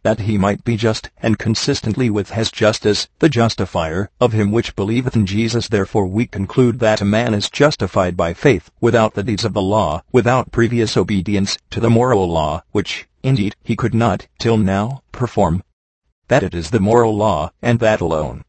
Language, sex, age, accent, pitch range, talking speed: English, male, 50-69, American, 100-115 Hz, 190 wpm